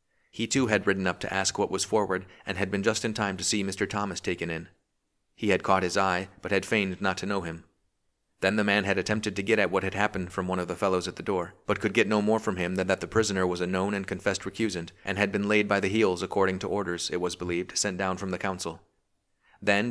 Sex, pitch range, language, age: male, 95-105 Hz, English, 30-49